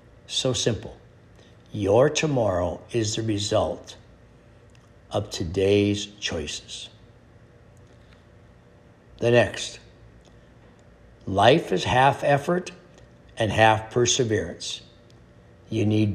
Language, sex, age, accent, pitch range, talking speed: English, male, 60-79, American, 100-135 Hz, 80 wpm